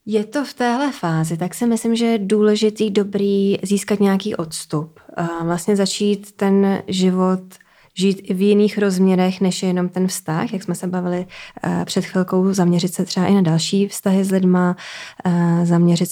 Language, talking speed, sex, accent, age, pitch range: Czech, 170 wpm, female, native, 20-39, 175-210 Hz